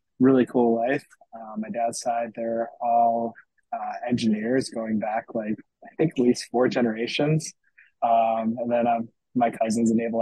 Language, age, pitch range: English, 20-39, 115-130 Hz